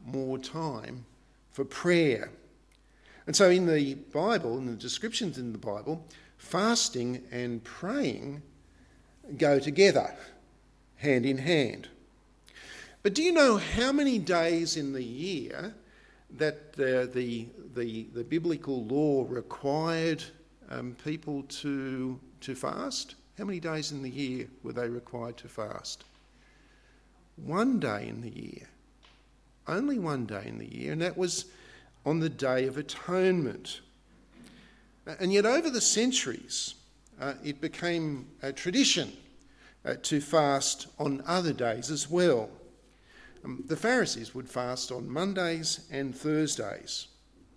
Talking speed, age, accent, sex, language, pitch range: 130 wpm, 50-69, Australian, male, English, 130-180 Hz